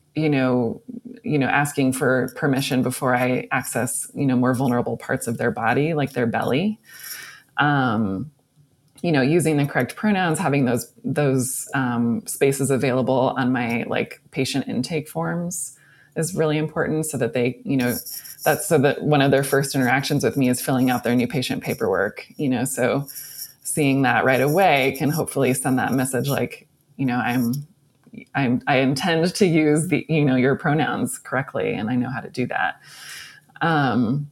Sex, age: female, 20-39